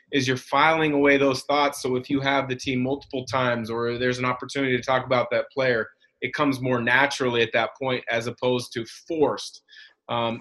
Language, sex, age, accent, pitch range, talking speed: English, male, 30-49, American, 125-150 Hz, 200 wpm